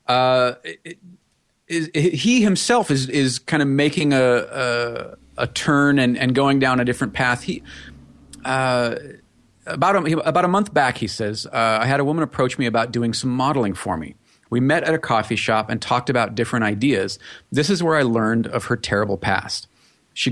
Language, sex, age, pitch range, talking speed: English, male, 40-59, 110-140 Hz, 195 wpm